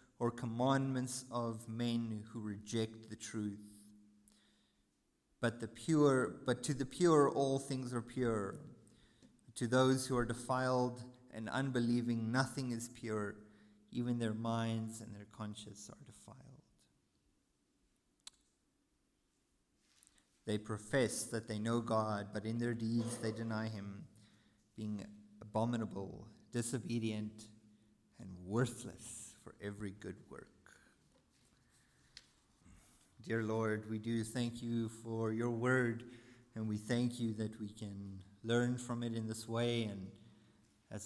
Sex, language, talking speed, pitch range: male, English, 120 wpm, 105-120 Hz